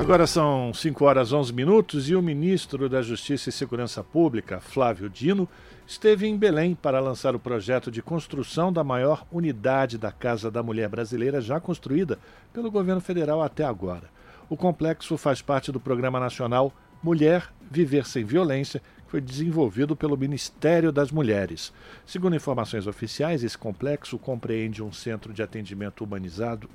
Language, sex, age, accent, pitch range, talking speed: Portuguese, male, 50-69, Brazilian, 120-160 Hz, 155 wpm